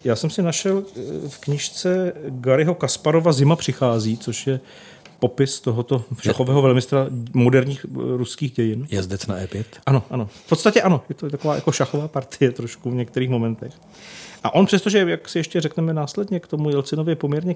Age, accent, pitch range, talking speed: 40-59, native, 115-150 Hz, 165 wpm